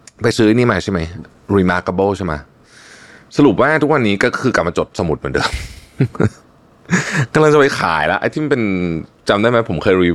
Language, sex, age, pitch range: Thai, male, 20-39, 85-130 Hz